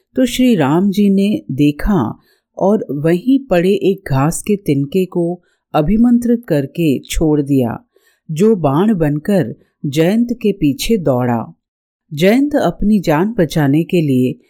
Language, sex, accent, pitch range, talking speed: Hindi, female, native, 145-210 Hz, 130 wpm